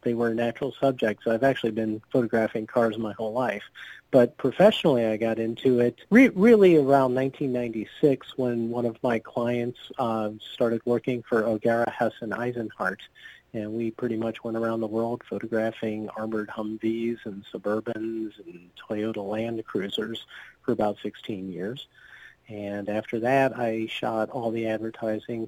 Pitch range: 110-125 Hz